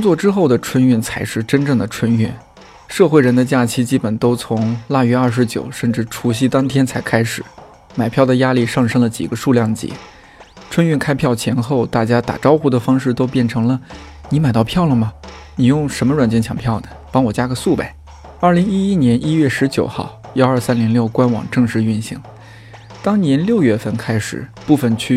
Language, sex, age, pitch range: Chinese, male, 20-39, 115-130 Hz